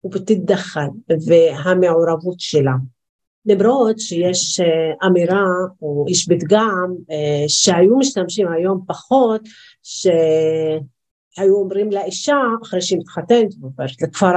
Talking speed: 85 wpm